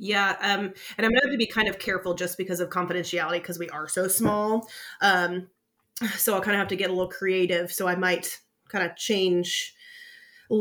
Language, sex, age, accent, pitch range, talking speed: English, female, 30-49, American, 175-205 Hz, 220 wpm